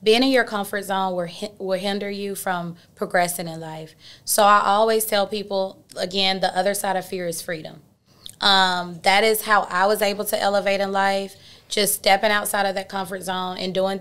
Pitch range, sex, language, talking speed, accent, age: 185-220 Hz, female, English, 195 wpm, American, 20-39